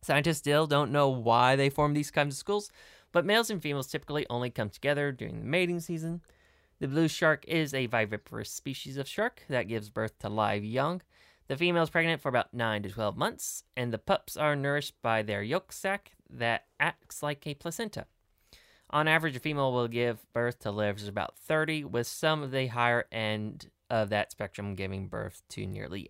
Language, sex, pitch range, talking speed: English, male, 110-155 Hz, 195 wpm